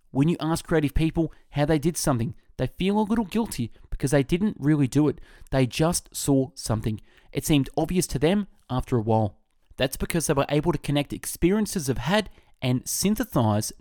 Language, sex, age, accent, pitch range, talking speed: English, male, 20-39, Australian, 120-170 Hz, 190 wpm